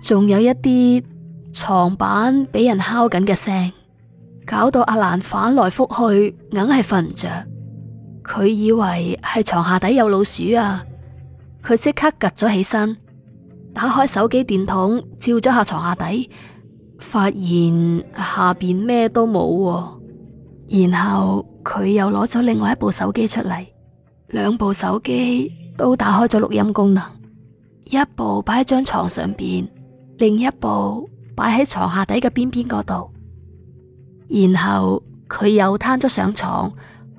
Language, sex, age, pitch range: Chinese, female, 20-39, 165-235 Hz